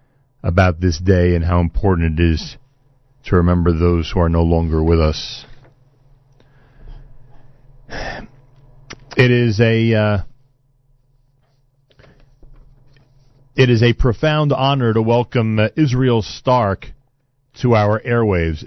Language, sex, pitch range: English, male, 100-135 Hz